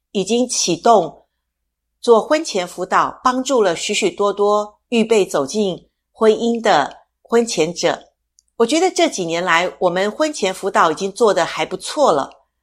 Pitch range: 170-255 Hz